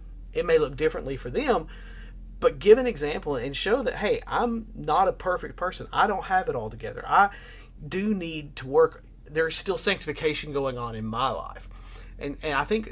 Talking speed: 195 wpm